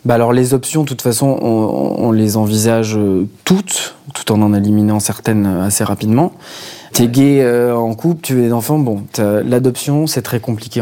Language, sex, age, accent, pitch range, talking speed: French, male, 20-39, French, 105-125 Hz, 185 wpm